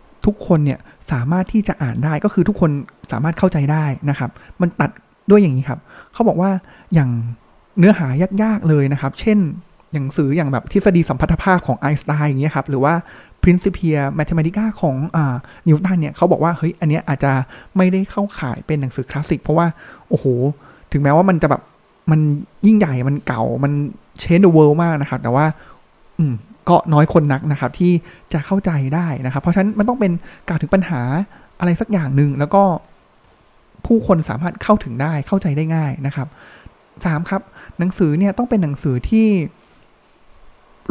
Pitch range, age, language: 145-190 Hz, 20-39, Thai